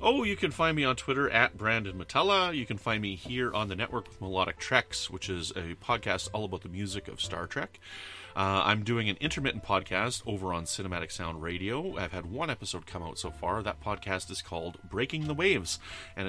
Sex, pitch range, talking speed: male, 95-120 Hz, 215 wpm